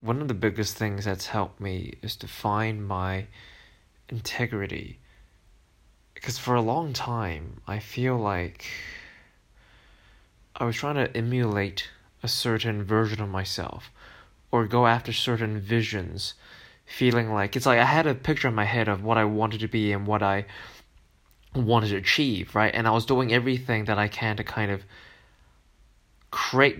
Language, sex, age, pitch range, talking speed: English, male, 20-39, 105-125 Hz, 160 wpm